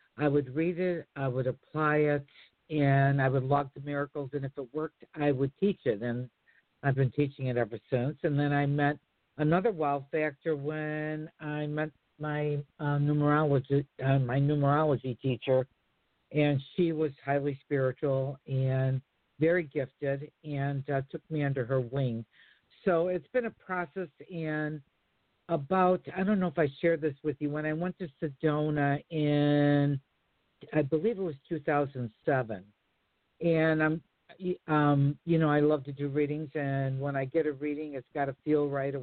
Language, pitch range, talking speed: English, 135-155 Hz, 170 wpm